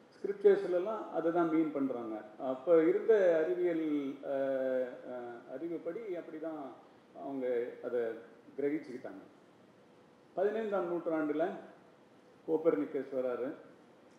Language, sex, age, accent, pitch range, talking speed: Tamil, male, 40-59, native, 135-190 Hz, 70 wpm